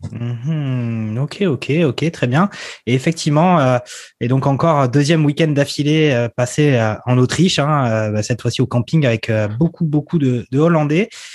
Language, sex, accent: French, male, French